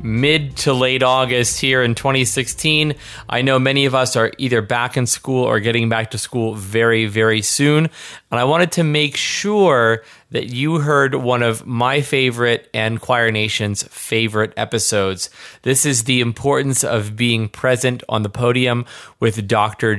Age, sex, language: 30-49, male, English